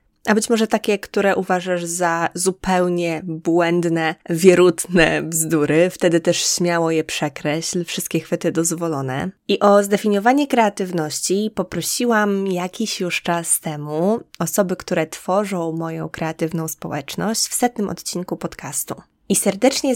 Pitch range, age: 170-205 Hz, 20-39